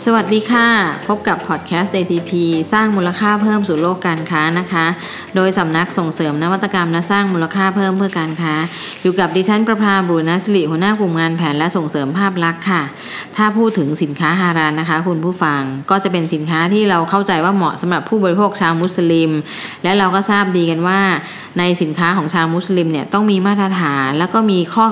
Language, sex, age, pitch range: Thai, female, 20-39, 165-200 Hz